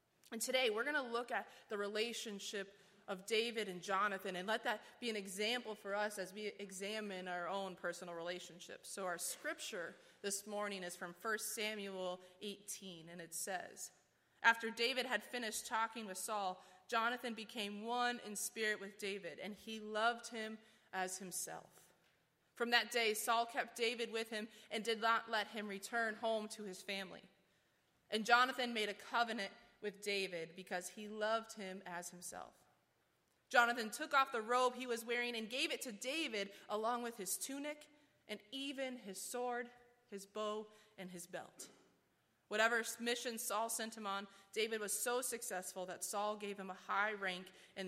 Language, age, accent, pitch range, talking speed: English, 20-39, American, 190-230 Hz, 170 wpm